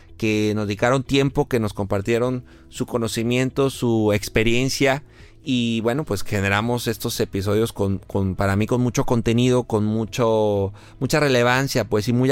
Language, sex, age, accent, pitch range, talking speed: Spanish, male, 30-49, Mexican, 105-130 Hz, 150 wpm